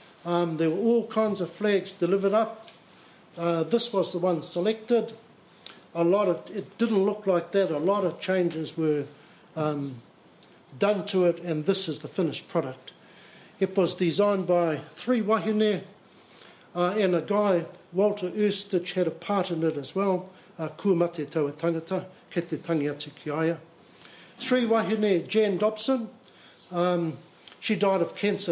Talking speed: 140 wpm